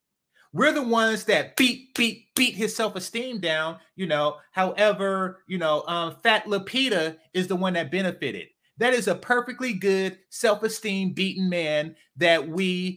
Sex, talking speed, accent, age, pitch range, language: male, 155 wpm, American, 30-49, 150-195 Hz, English